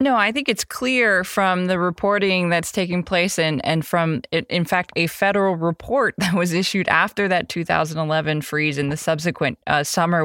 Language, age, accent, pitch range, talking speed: English, 20-39, American, 155-190 Hz, 185 wpm